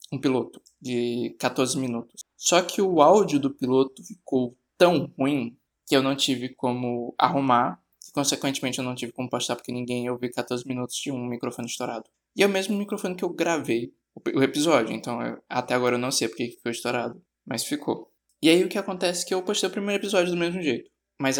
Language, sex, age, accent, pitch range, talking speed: Portuguese, male, 20-39, Brazilian, 125-160 Hz, 210 wpm